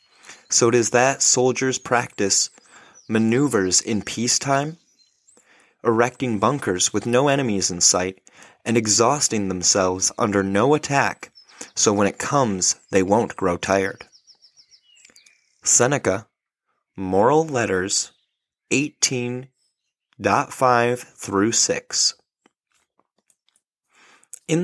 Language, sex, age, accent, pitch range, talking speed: English, male, 30-49, American, 100-135 Hz, 95 wpm